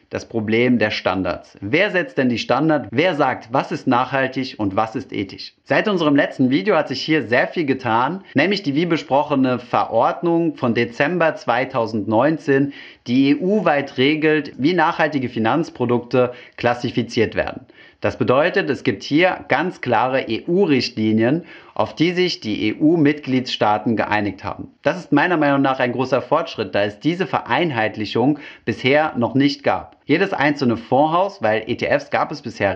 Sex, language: male, German